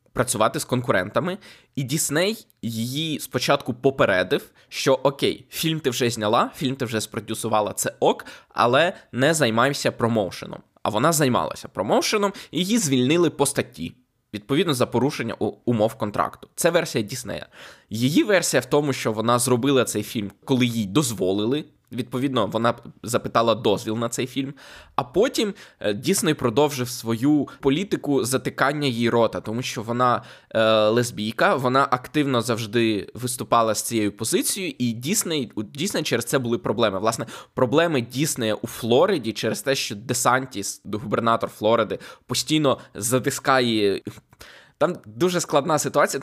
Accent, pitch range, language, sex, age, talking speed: native, 115-145 Hz, Ukrainian, male, 20-39, 140 wpm